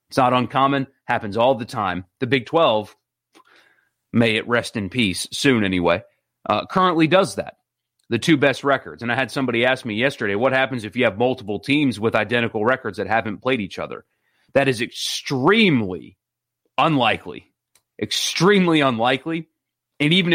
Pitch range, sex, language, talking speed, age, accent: 115-145 Hz, male, English, 160 wpm, 30-49, American